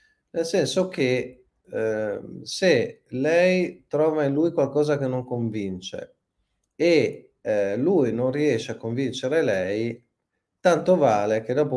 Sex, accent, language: male, native, Italian